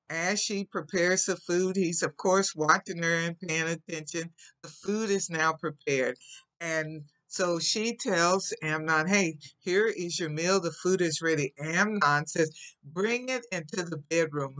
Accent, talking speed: American, 160 wpm